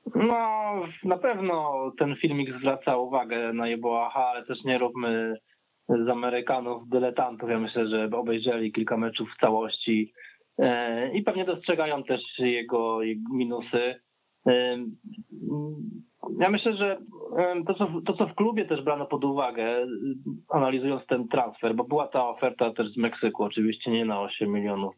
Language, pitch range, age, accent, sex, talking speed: Polish, 120-150 Hz, 20-39, native, male, 135 wpm